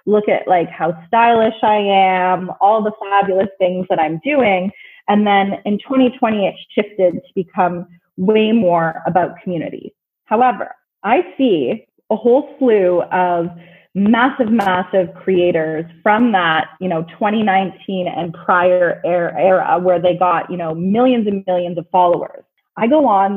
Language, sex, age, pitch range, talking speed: English, female, 20-39, 185-255 Hz, 145 wpm